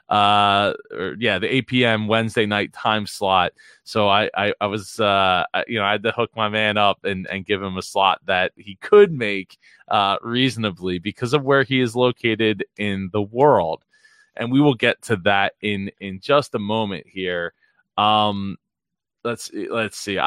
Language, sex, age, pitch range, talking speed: English, male, 20-39, 100-125 Hz, 185 wpm